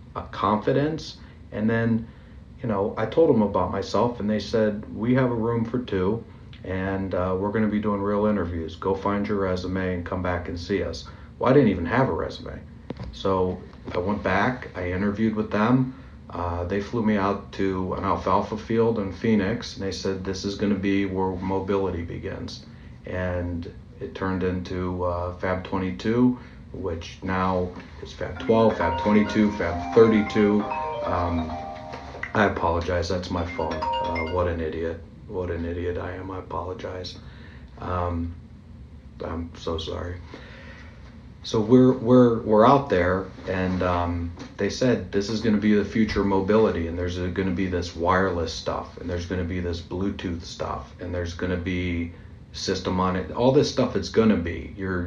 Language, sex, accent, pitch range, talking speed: English, male, American, 90-105 Hz, 180 wpm